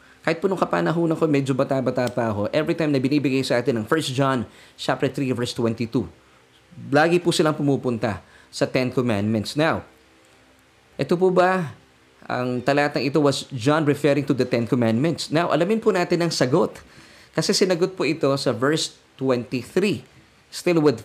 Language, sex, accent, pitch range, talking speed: Filipino, male, native, 120-160 Hz, 160 wpm